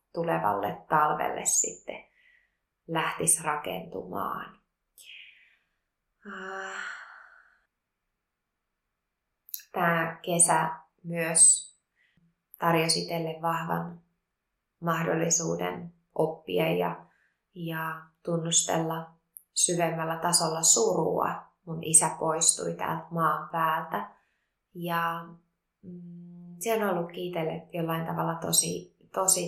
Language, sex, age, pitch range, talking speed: Finnish, female, 20-39, 160-175 Hz, 65 wpm